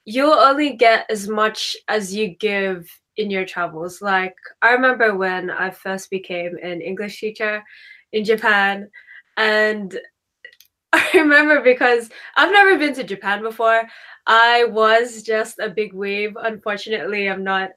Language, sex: English, female